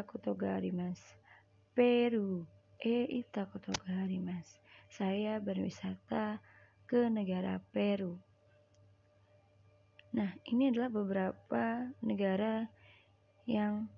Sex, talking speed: female, 70 wpm